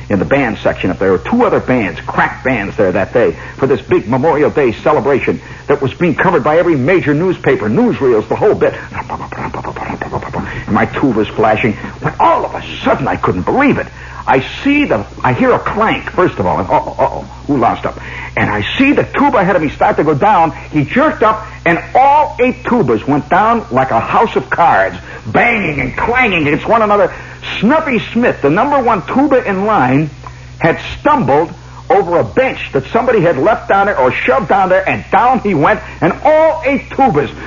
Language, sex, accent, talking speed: English, male, American, 200 wpm